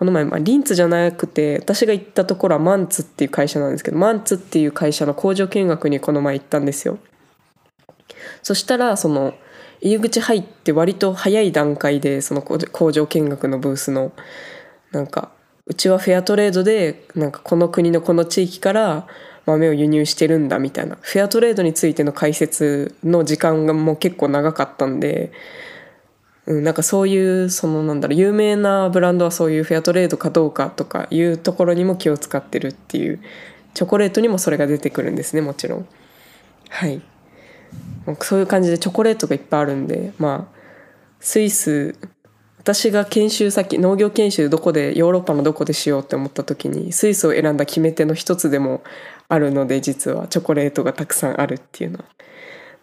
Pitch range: 150-195 Hz